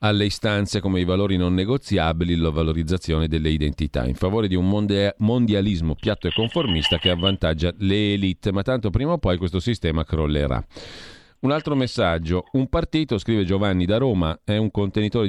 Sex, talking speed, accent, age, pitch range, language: male, 170 wpm, native, 40-59, 85-110 Hz, Italian